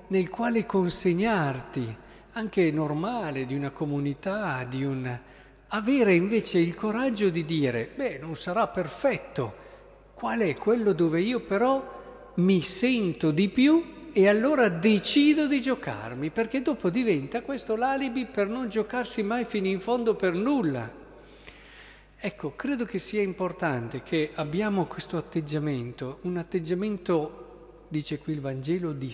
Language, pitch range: Italian, 140-205 Hz